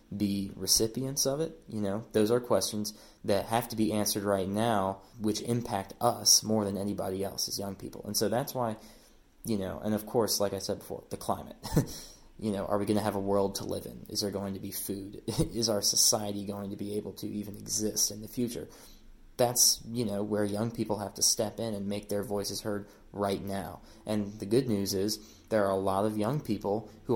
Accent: American